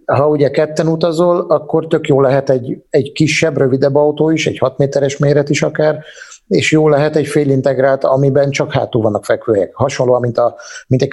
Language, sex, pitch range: Hungarian, male, 125-150 Hz